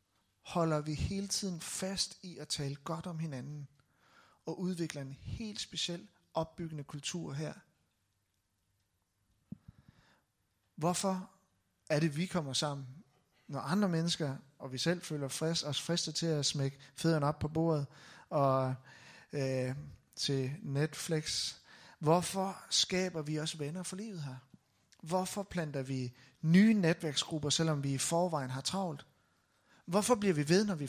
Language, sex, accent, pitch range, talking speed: Danish, male, native, 140-180 Hz, 140 wpm